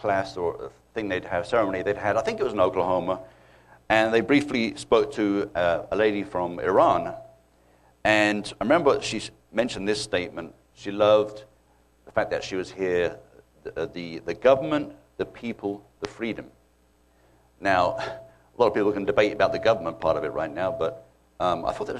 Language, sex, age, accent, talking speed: English, male, 60-79, British, 185 wpm